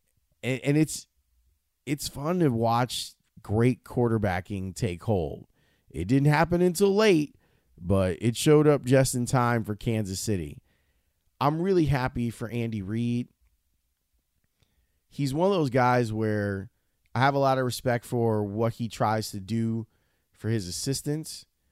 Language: English